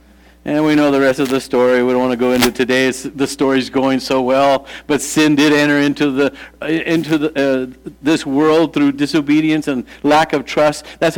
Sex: male